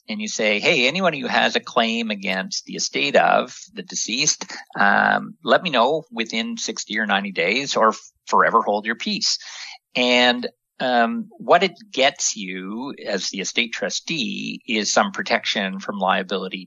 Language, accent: English, American